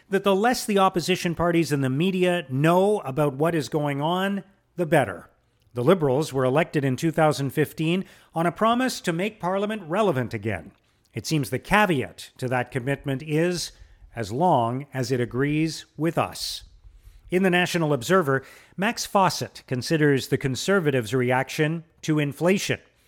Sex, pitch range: male, 130-180 Hz